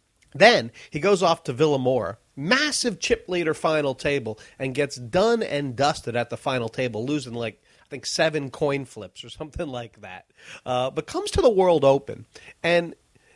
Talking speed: 175 wpm